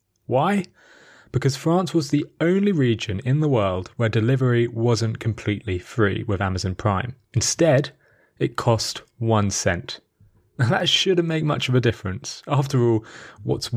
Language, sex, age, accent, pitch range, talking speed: English, male, 30-49, British, 105-135 Hz, 150 wpm